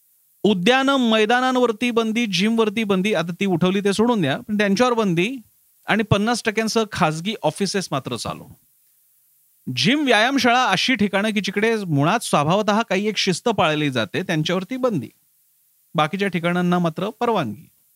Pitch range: 155-225 Hz